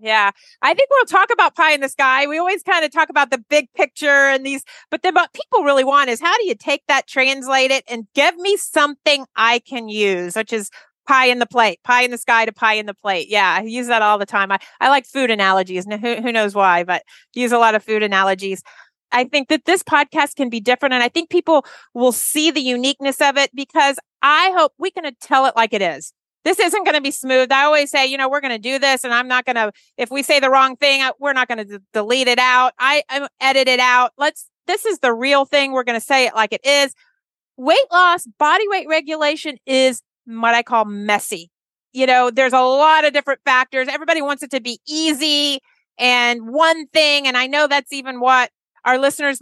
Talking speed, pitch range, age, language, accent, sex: 240 wpm, 240-300 Hz, 40-59, English, American, female